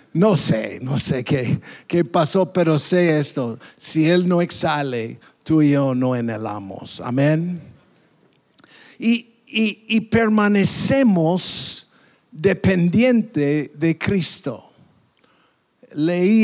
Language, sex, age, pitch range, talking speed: English, male, 50-69, 150-190 Hz, 100 wpm